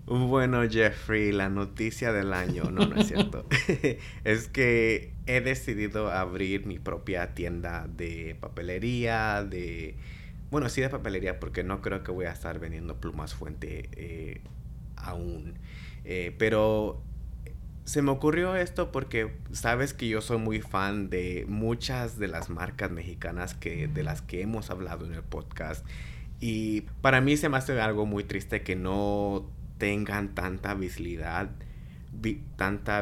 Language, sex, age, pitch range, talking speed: Spanish, male, 30-49, 85-115 Hz, 145 wpm